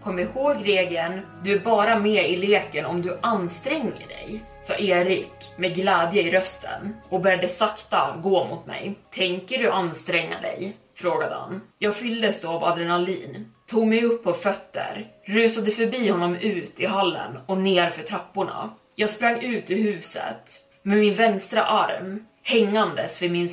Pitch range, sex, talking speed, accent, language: 180-210 Hz, female, 160 wpm, native, Swedish